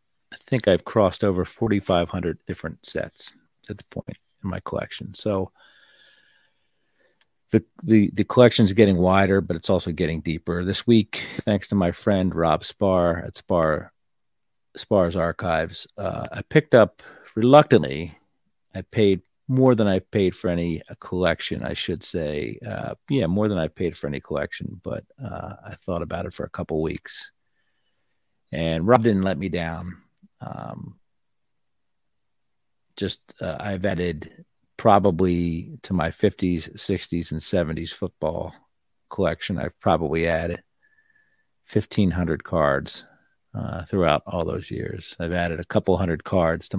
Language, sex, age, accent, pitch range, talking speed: English, male, 50-69, American, 85-100 Hz, 145 wpm